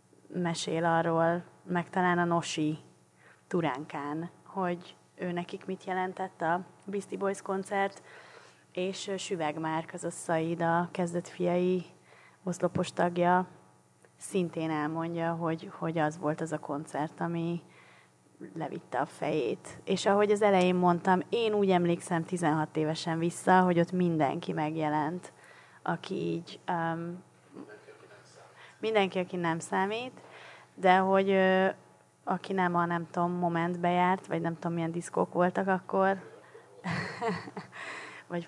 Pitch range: 165-185 Hz